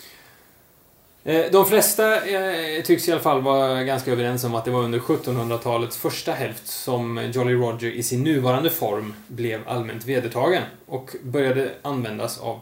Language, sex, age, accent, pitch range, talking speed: Swedish, male, 20-39, Norwegian, 115-135 Hz, 150 wpm